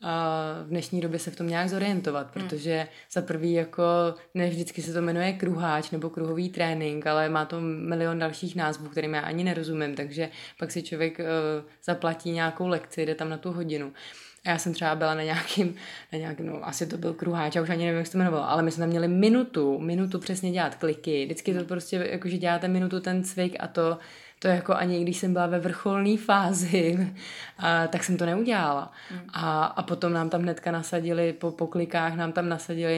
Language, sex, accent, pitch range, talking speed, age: Czech, female, native, 160-180 Hz, 200 wpm, 20-39